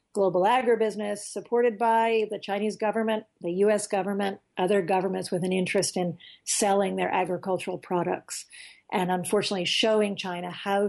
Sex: female